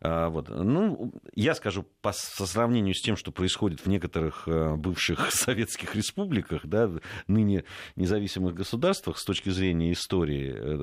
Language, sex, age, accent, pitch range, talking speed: Russian, male, 40-59, native, 90-130 Hz, 115 wpm